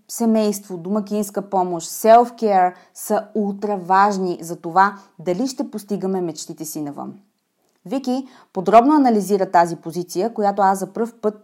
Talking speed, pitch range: 125 wpm, 190-255 Hz